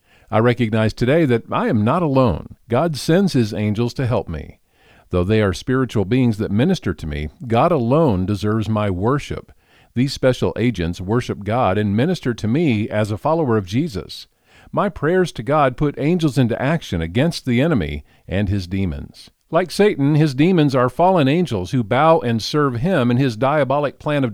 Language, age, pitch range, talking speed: English, 50-69, 105-145 Hz, 180 wpm